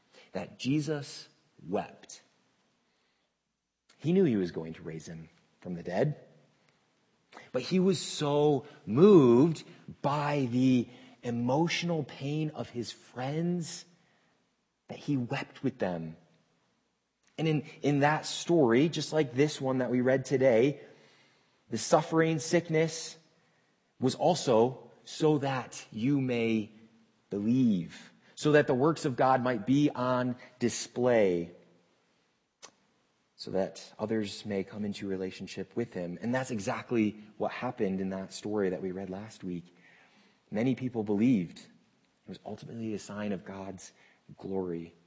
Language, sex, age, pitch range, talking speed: English, male, 30-49, 95-150 Hz, 130 wpm